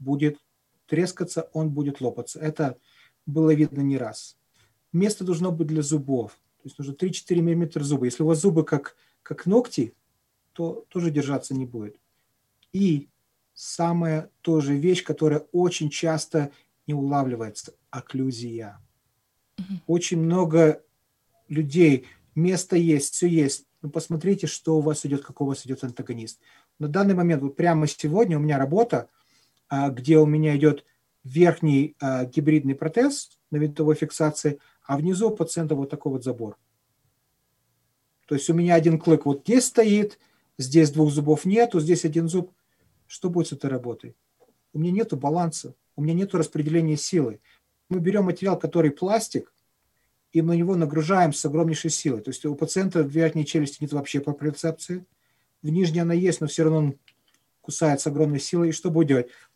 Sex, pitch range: male, 140-170 Hz